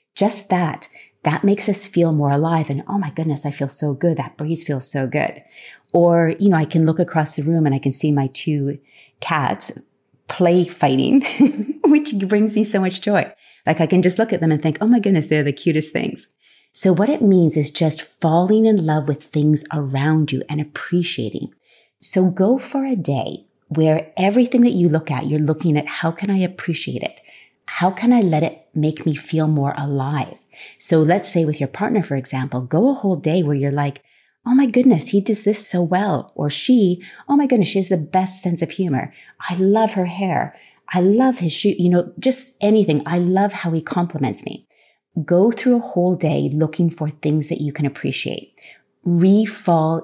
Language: English